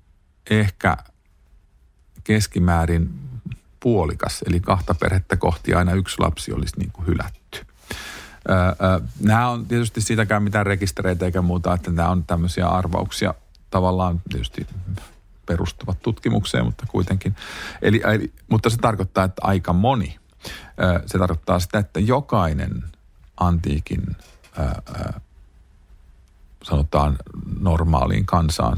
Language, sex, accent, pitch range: Finnish, male, native, 80-100 Hz